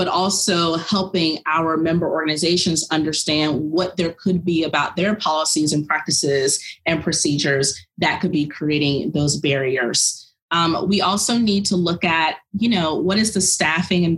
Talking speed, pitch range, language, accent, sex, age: 160 wpm, 150-185 Hz, English, American, female, 30-49